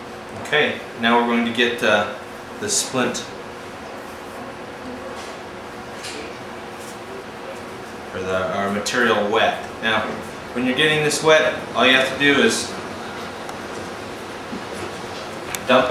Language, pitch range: English, 120-150 Hz